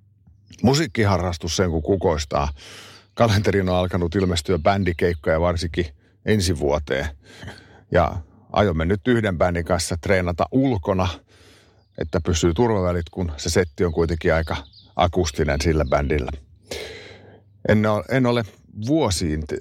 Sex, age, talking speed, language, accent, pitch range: male, 50-69, 105 wpm, Finnish, native, 85-105 Hz